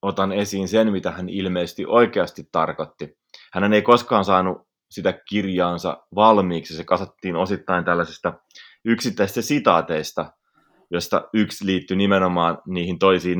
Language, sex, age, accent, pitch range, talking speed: Finnish, male, 30-49, native, 85-100 Hz, 120 wpm